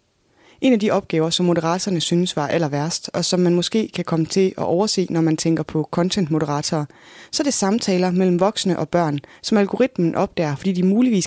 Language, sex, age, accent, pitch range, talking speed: Danish, female, 20-39, native, 160-195 Hz, 200 wpm